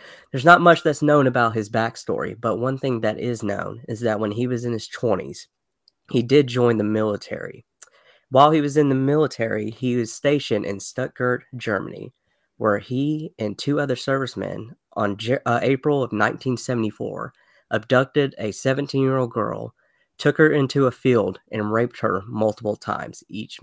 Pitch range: 110-135 Hz